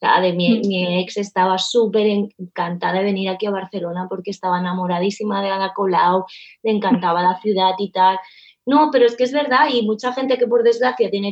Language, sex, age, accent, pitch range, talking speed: Spanish, female, 20-39, Spanish, 185-230 Hz, 195 wpm